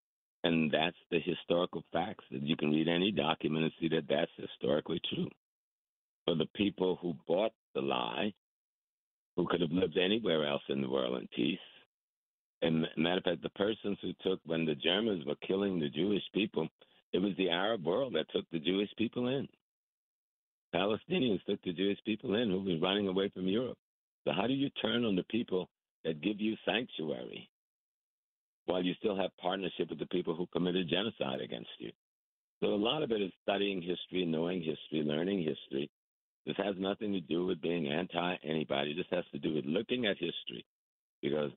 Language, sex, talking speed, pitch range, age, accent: English, male, 185 wpm, 80-95 Hz, 60-79, American